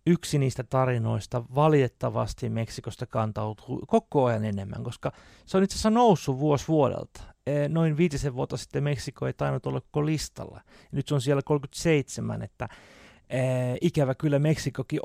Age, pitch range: 30-49, 125-165 Hz